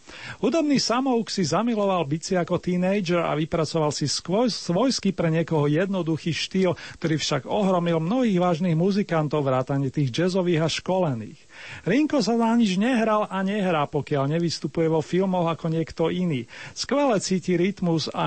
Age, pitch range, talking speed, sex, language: 40-59, 150-195 Hz, 145 wpm, male, Slovak